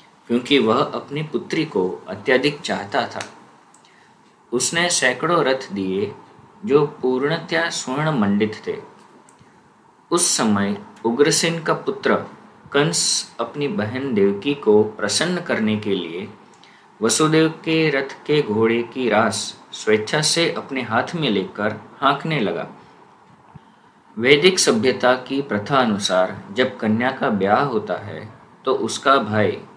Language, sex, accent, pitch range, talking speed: Hindi, male, native, 105-155 Hz, 120 wpm